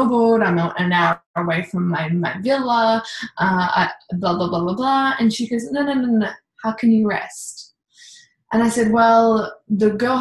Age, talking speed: 10-29, 190 wpm